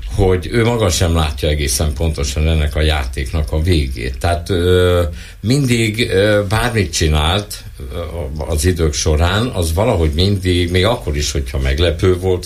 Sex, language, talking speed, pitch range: male, Hungarian, 135 wpm, 75-95 Hz